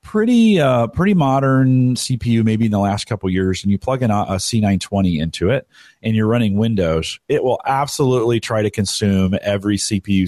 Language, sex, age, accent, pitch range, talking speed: English, male, 40-59, American, 95-125 Hz, 195 wpm